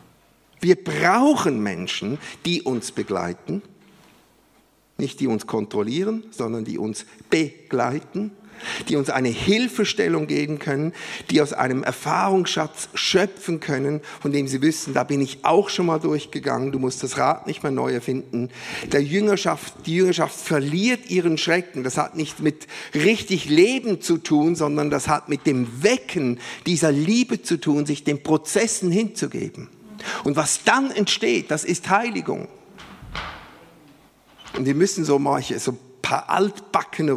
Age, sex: 50-69, male